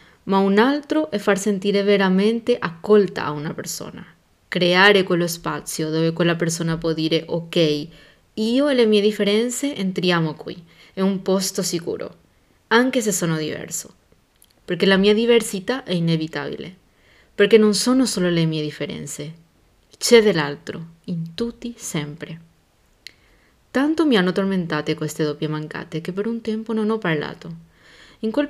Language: Italian